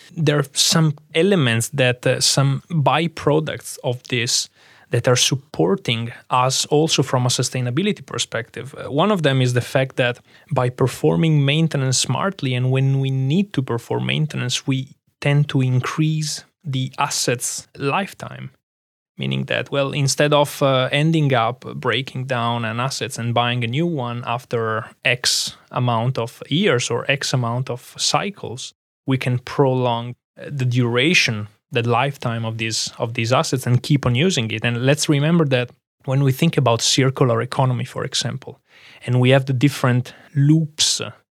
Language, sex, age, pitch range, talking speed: Danish, male, 20-39, 125-145 Hz, 155 wpm